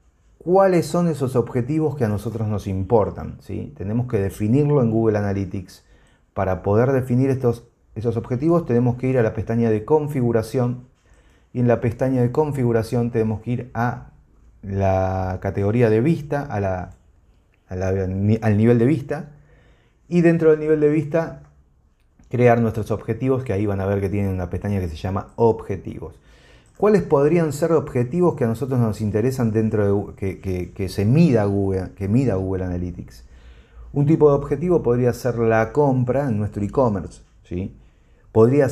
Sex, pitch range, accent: male, 100-130 Hz, Argentinian